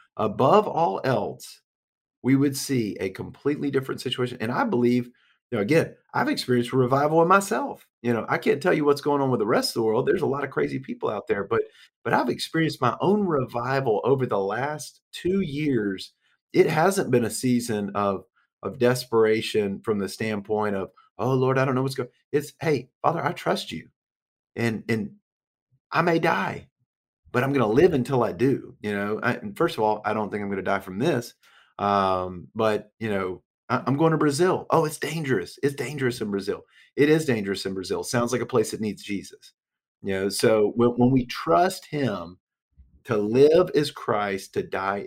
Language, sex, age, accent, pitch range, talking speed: English, male, 40-59, American, 110-160 Hz, 200 wpm